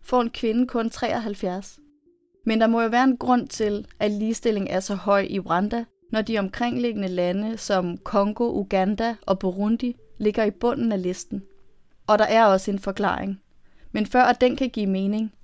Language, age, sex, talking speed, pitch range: Danish, 30-49, female, 185 wpm, 195-235 Hz